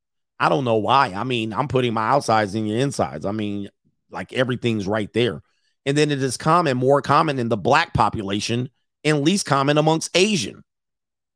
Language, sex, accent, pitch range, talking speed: English, male, American, 115-155 Hz, 185 wpm